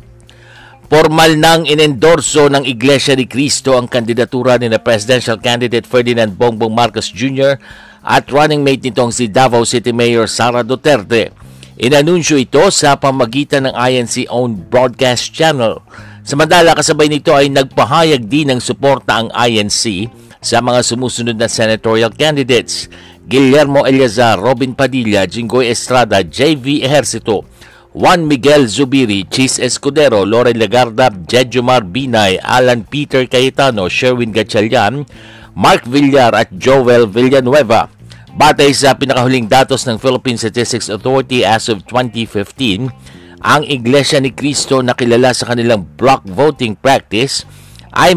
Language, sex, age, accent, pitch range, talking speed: Filipino, male, 50-69, native, 115-140 Hz, 125 wpm